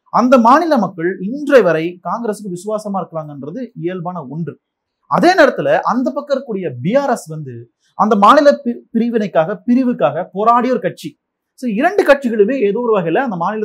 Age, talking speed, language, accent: 30-49, 55 wpm, Tamil, native